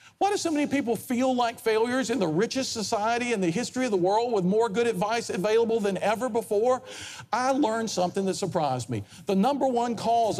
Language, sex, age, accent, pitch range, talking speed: English, male, 50-69, American, 190-260 Hz, 210 wpm